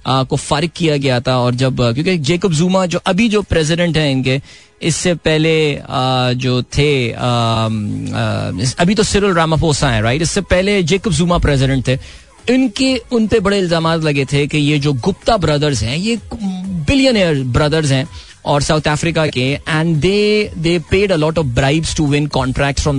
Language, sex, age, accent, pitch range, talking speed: Hindi, male, 20-39, native, 130-175 Hz, 165 wpm